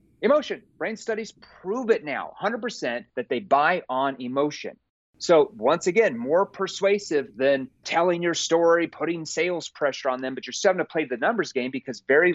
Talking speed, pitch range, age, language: 175 wpm, 135-195 Hz, 30-49, English